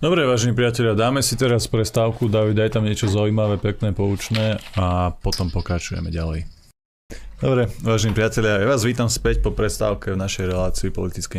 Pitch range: 90-105 Hz